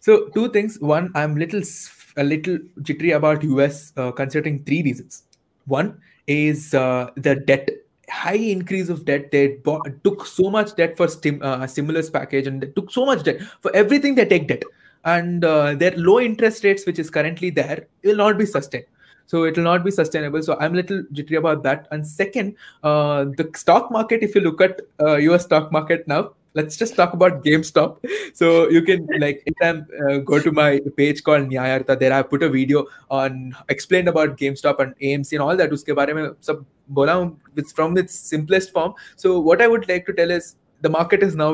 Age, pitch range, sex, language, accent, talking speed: 20-39, 140-175 Hz, male, Hindi, native, 205 wpm